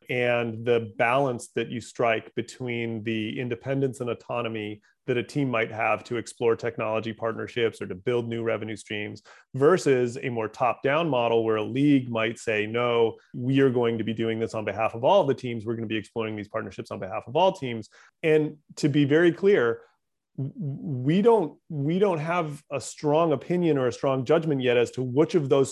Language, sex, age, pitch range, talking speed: English, male, 30-49, 120-155 Hz, 200 wpm